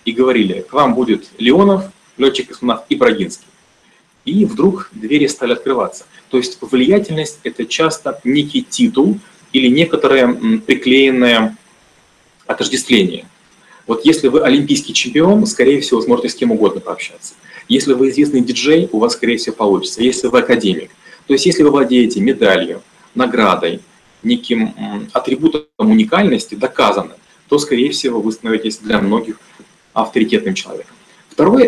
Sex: male